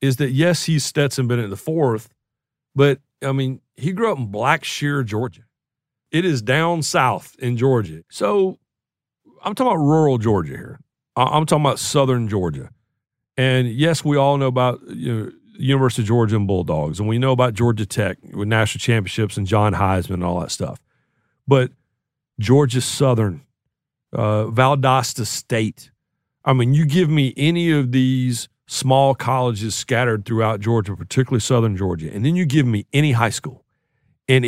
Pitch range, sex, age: 115-140 Hz, male, 50-69